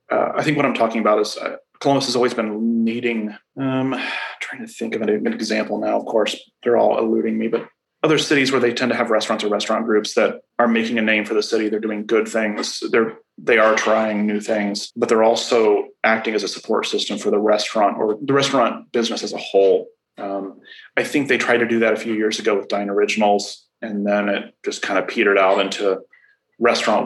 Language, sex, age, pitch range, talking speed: English, male, 20-39, 105-125 Hz, 225 wpm